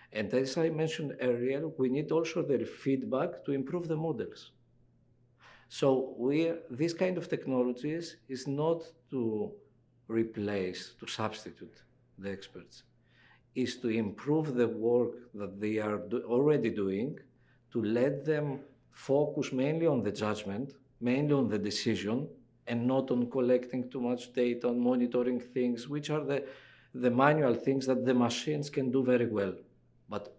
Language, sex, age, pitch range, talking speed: English, male, 50-69, 115-140 Hz, 145 wpm